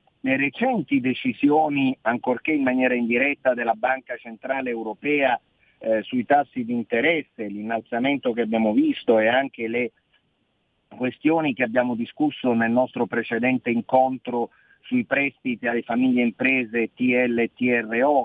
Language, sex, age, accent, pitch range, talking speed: Italian, male, 50-69, native, 120-160 Hz, 125 wpm